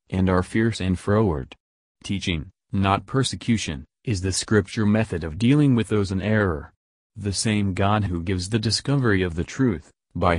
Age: 30-49